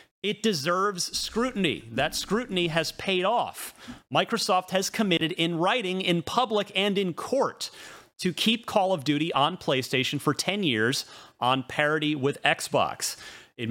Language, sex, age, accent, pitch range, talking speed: English, male, 30-49, American, 150-195 Hz, 145 wpm